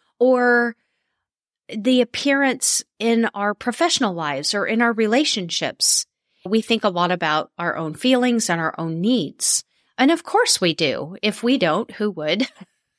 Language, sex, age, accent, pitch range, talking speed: English, female, 30-49, American, 185-255 Hz, 150 wpm